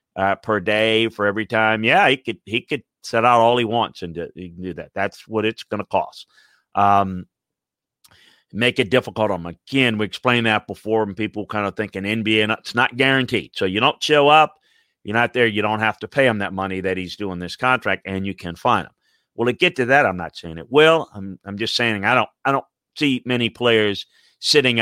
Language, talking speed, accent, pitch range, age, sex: English, 235 wpm, American, 100-130 Hz, 40-59, male